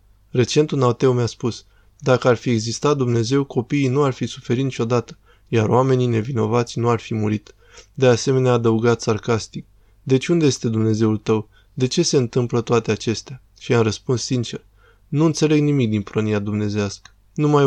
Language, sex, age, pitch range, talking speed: Romanian, male, 20-39, 115-135 Hz, 165 wpm